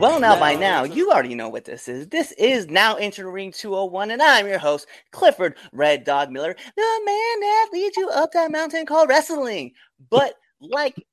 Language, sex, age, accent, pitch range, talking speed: English, male, 30-49, American, 175-285 Hz, 190 wpm